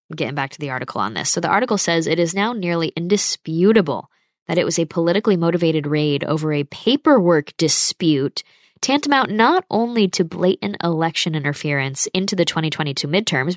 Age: 10-29